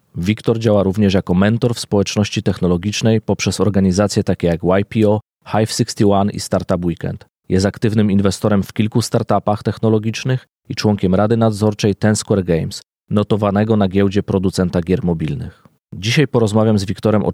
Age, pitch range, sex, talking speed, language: 30-49, 95-110 Hz, male, 145 wpm, Polish